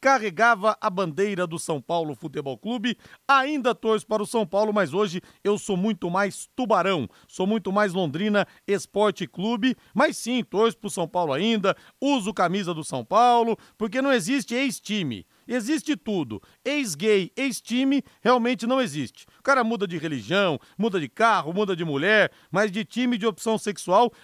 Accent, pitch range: Brazilian, 190-235 Hz